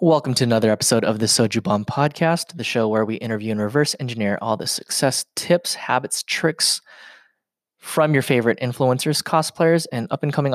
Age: 20-39